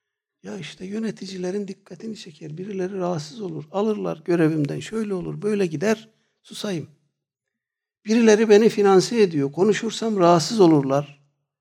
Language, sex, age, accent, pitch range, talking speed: Turkish, male, 60-79, native, 140-190 Hz, 115 wpm